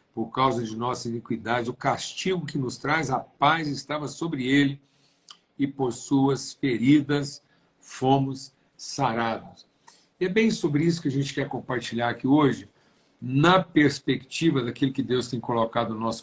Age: 60-79